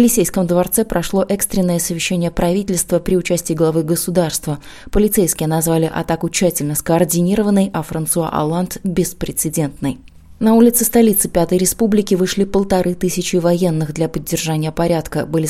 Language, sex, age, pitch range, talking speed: Russian, female, 20-39, 160-180 Hz, 130 wpm